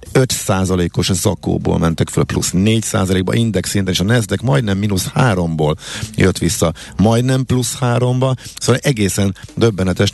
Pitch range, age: 90-115 Hz, 50-69